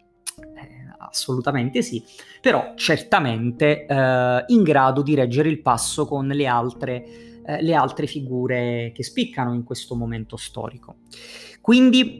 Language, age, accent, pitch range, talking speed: Italian, 30-49, native, 130-160 Hz, 125 wpm